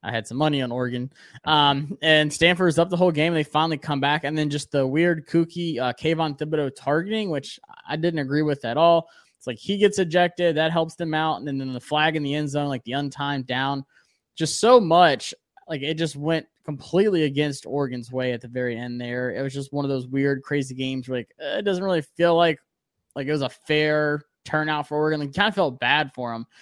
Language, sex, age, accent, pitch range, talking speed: English, male, 20-39, American, 130-165 Hz, 235 wpm